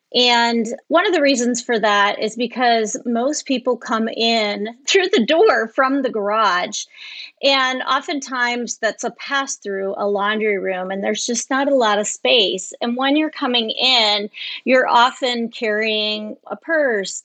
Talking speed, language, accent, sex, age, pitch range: 155 wpm, English, American, female, 30-49, 215-270 Hz